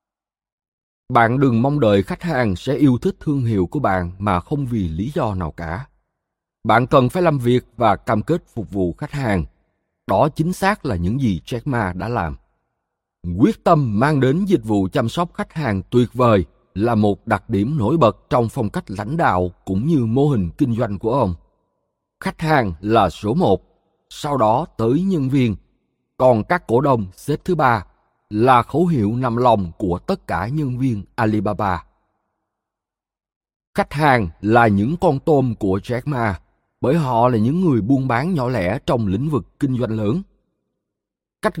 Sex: male